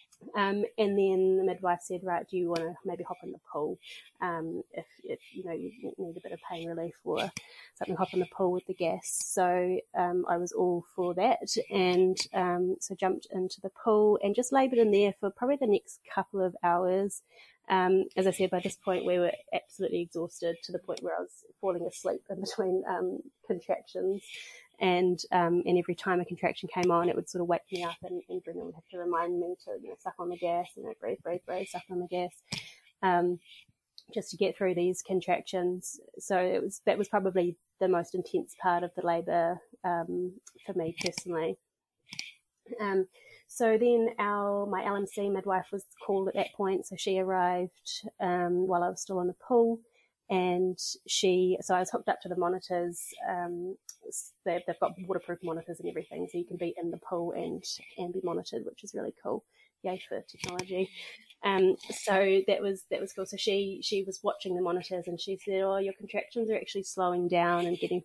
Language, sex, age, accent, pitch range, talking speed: English, female, 30-49, Australian, 175-200 Hz, 210 wpm